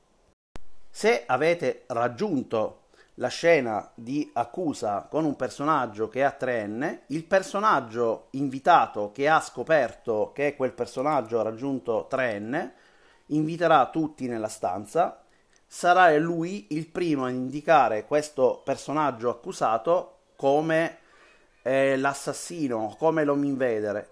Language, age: Italian, 30-49